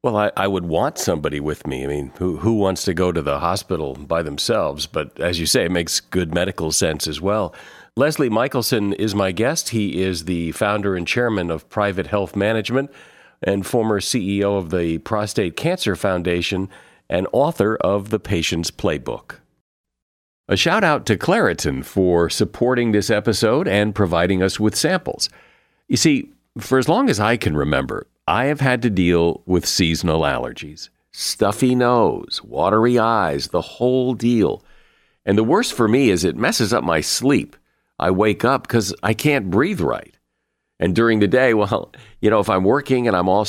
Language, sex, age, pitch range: English, male, 50-69, 85-110 Hz